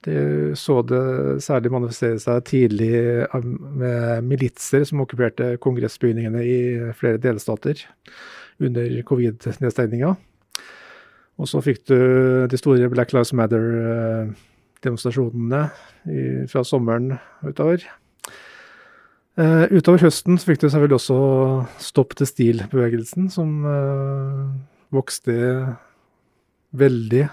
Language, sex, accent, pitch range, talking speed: Danish, male, Norwegian, 120-140 Hz, 100 wpm